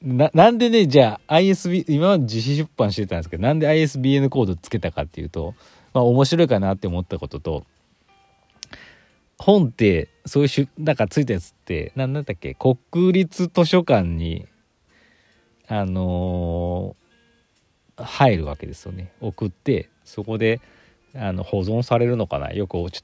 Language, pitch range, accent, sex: Japanese, 90-130 Hz, native, male